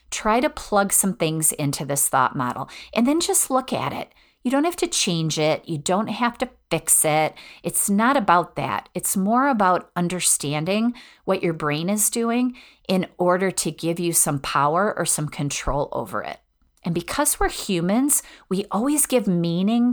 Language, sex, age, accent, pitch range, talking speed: English, female, 40-59, American, 165-230 Hz, 180 wpm